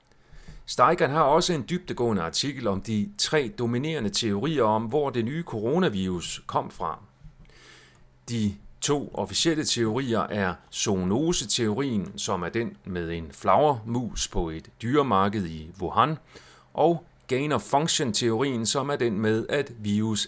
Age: 40-59